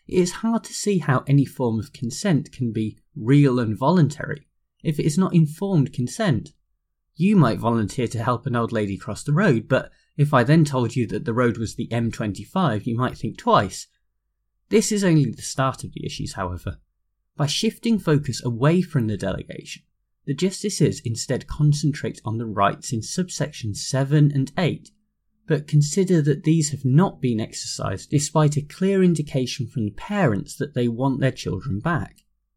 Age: 20-39